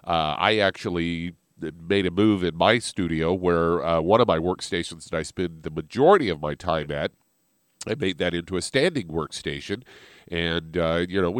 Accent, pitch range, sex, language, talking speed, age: American, 85-100 Hz, male, English, 185 wpm, 50-69